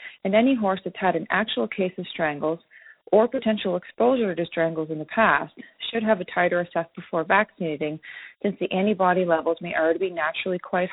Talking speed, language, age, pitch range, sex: 185 wpm, English, 40-59, 165-205 Hz, female